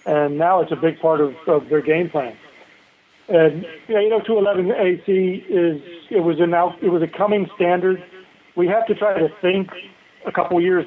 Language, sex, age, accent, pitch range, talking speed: English, male, 40-59, American, 150-175 Hz, 195 wpm